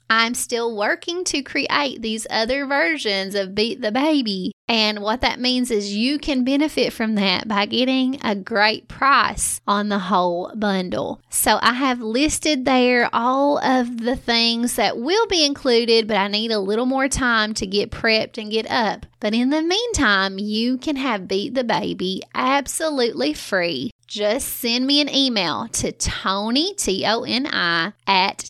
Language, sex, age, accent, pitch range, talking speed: English, female, 20-39, American, 210-265 Hz, 165 wpm